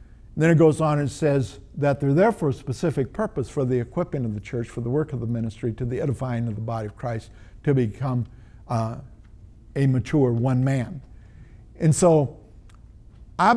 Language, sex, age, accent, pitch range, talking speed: English, male, 50-69, American, 110-155 Hz, 190 wpm